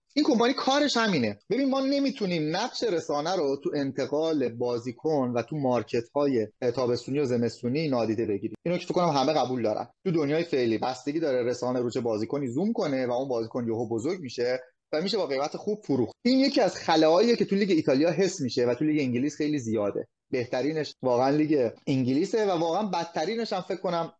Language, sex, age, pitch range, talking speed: Persian, male, 30-49, 125-165 Hz, 190 wpm